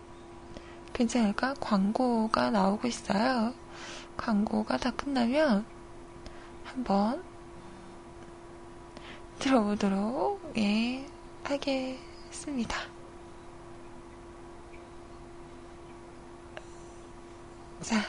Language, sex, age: Korean, female, 20-39